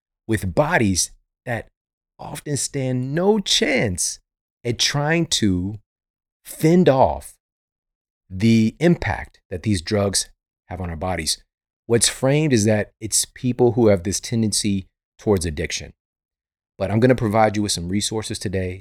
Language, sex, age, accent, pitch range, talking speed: English, male, 40-59, American, 90-120 Hz, 135 wpm